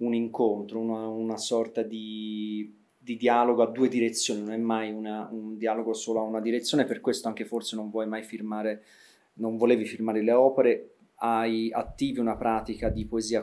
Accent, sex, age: native, male, 30-49